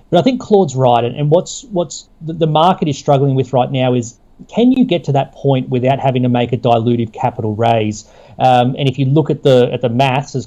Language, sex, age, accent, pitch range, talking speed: English, male, 30-49, Australian, 125-160 Hz, 235 wpm